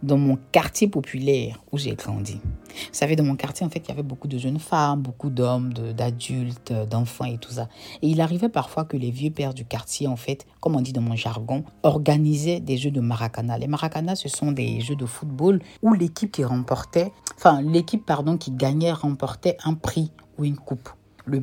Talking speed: 215 wpm